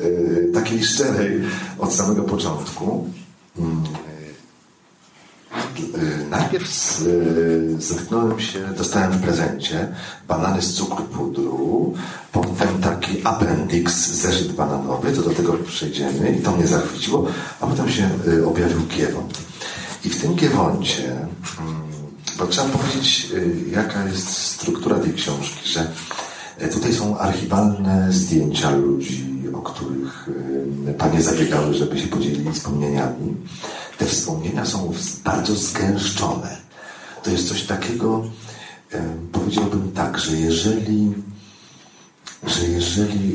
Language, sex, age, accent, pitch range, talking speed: Polish, male, 40-59, native, 75-100 Hz, 100 wpm